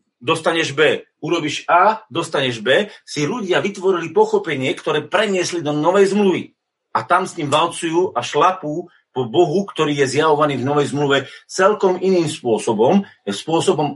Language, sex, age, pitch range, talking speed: Slovak, male, 40-59, 155-190 Hz, 140 wpm